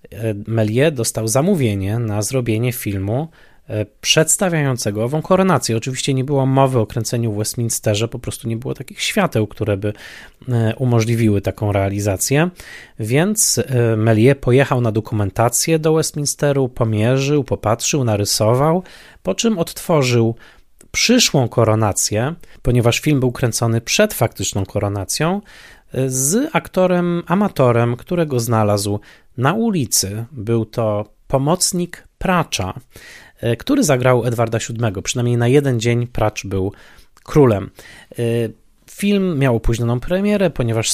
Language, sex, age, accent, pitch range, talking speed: Polish, male, 20-39, native, 110-145 Hz, 115 wpm